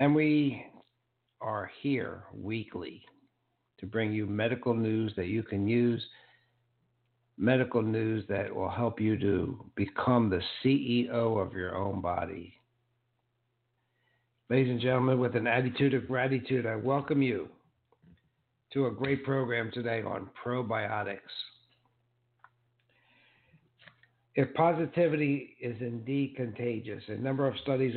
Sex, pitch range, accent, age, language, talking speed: male, 115-130 Hz, American, 60-79, English, 120 wpm